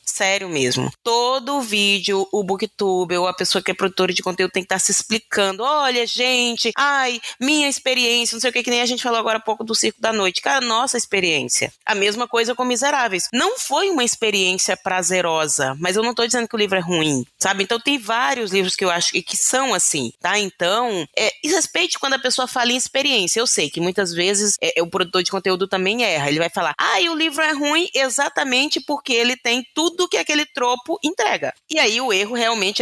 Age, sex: 20-39, female